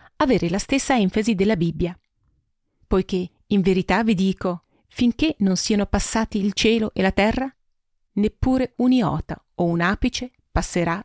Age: 40-59